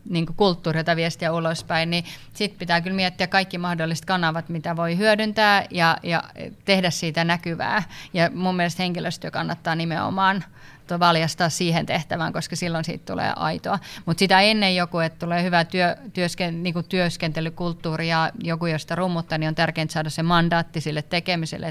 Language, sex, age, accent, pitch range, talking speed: Finnish, female, 30-49, native, 160-180 Hz, 160 wpm